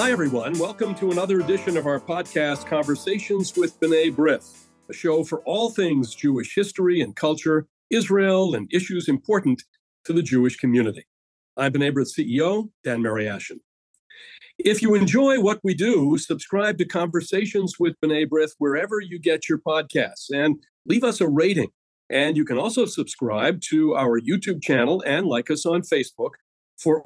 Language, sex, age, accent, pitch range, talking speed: English, male, 50-69, American, 145-195 Hz, 165 wpm